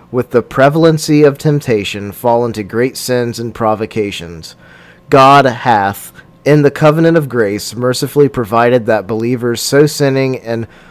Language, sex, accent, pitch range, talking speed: English, male, American, 115-145 Hz, 140 wpm